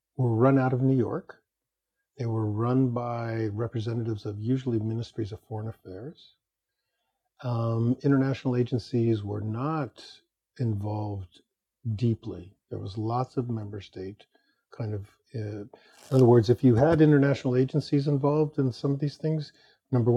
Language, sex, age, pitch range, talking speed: English, male, 50-69, 110-140 Hz, 145 wpm